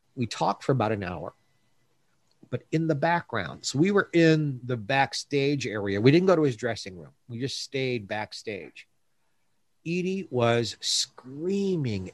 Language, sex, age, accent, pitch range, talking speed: English, male, 50-69, American, 100-135 Hz, 155 wpm